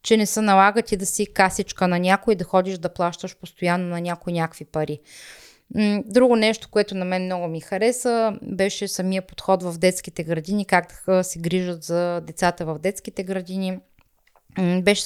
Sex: female